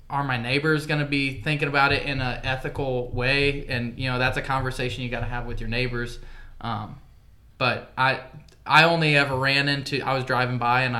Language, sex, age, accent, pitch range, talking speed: English, male, 20-39, American, 120-135 Hz, 200 wpm